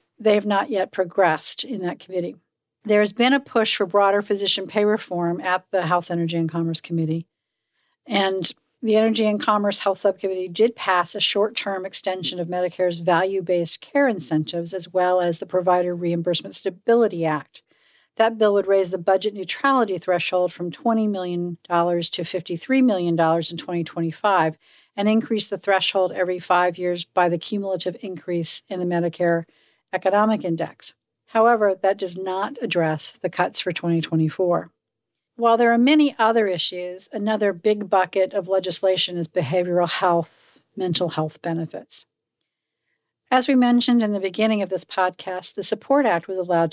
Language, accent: English, American